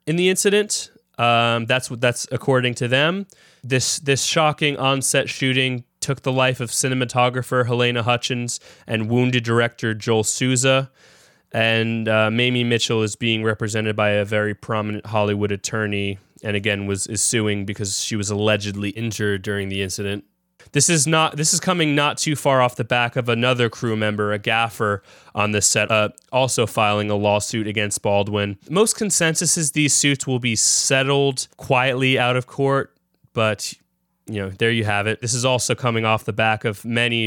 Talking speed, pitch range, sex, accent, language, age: 175 wpm, 105-130 Hz, male, American, English, 20-39